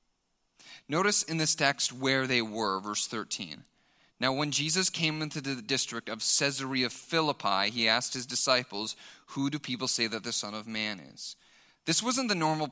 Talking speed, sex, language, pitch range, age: 175 wpm, male, English, 120-160 Hz, 30-49